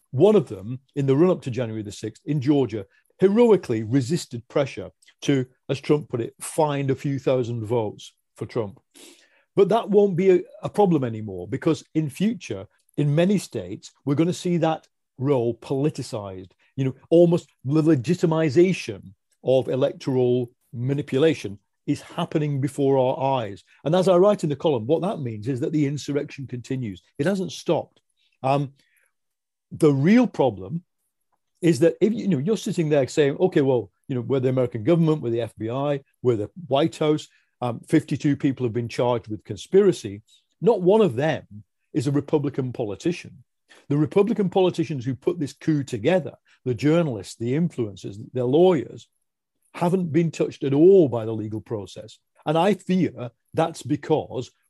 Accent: British